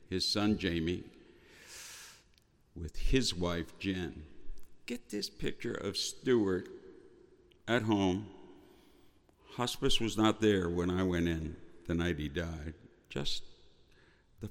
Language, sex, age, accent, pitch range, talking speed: English, male, 60-79, American, 85-110 Hz, 115 wpm